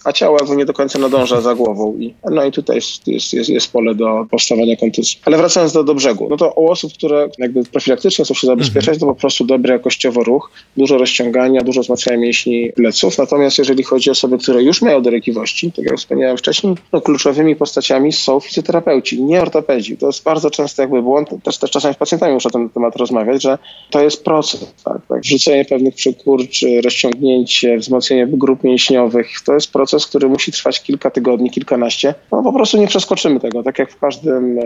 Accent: native